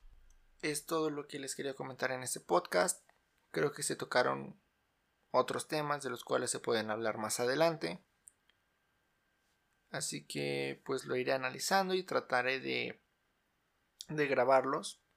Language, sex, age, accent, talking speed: Spanish, male, 20-39, Mexican, 140 wpm